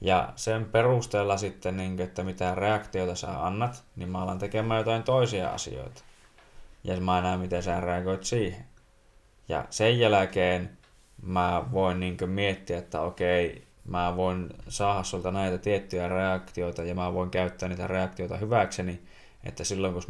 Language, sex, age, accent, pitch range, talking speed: Finnish, male, 20-39, native, 90-100 Hz, 145 wpm